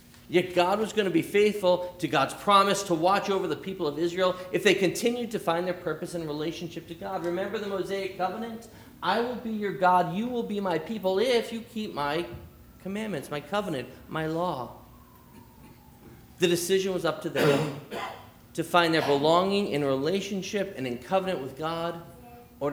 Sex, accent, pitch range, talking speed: male, American, 135-185 Hz, 180 wpm